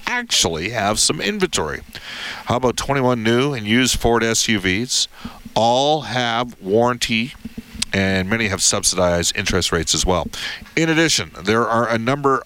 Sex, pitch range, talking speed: male, 100-130 Hz, 140 wpm